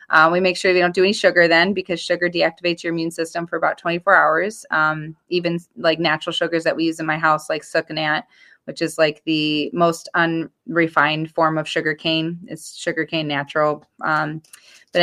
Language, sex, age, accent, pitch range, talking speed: English, female, 20-39, American, 160-175 Hz, 195 wpm